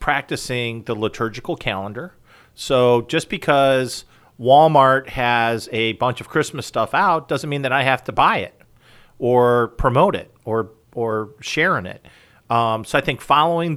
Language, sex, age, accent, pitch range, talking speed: English, male, 40-59, American, 110-130 Hz, 155 wpm